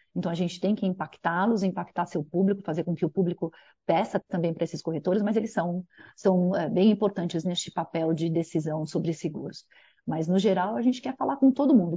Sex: female